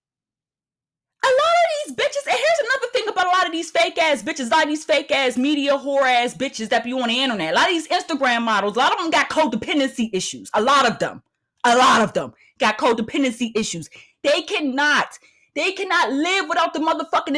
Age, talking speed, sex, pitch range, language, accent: 30-49, 220 wpm, female, 270-380 Hz, English, American